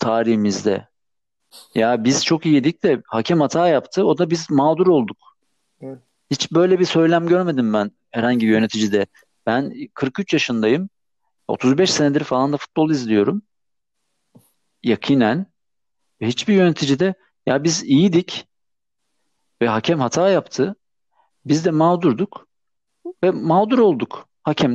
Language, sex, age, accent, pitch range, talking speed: Turkish, male, 50-69, native, 130-180 Hz, 120 wpm